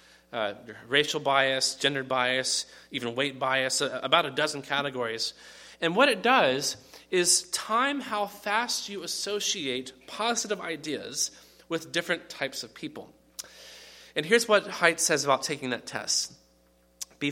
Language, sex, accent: English, male, American